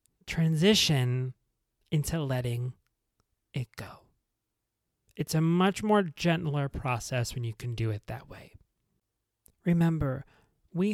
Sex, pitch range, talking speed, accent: male, 115-180 Hz, 110 wpm, American